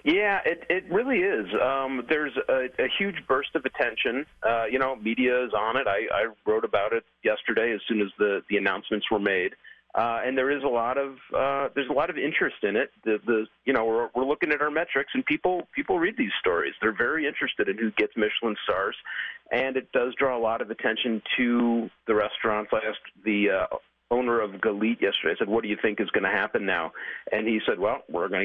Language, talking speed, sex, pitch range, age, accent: English, 230 wpm, male, 115-170 Hz, 40-59, American